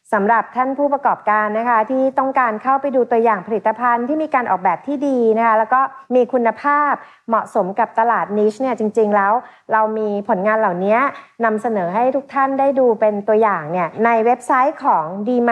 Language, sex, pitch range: Thai, female, 210-255 Hz